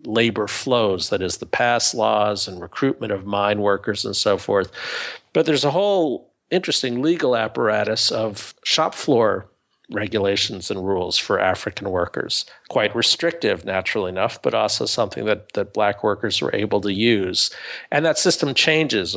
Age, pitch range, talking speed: 50-69, 100-130 Hz, 155 wpm